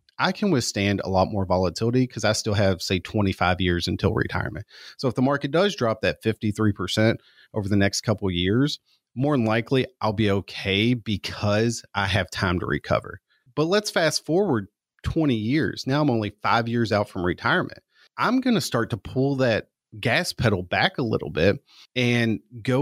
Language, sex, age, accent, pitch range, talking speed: English, male, 30-49, American, 100-130 Hz, 185 wpm